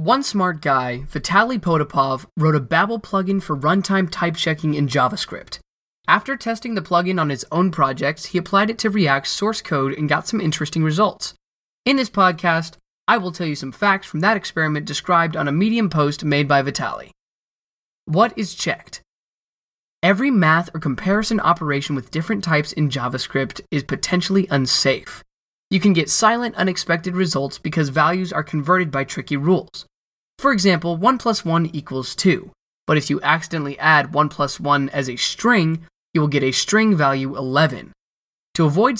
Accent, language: American, English